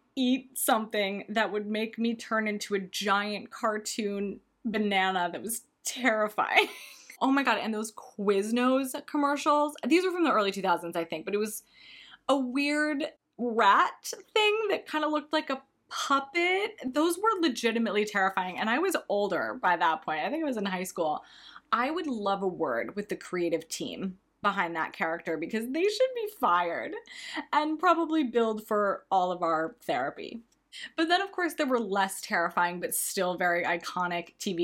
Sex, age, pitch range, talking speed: female, 20-39, 180-265 Hz, 175 wpm